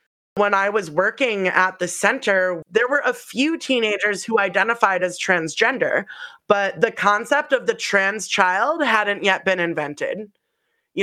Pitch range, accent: 170-205 Hz, American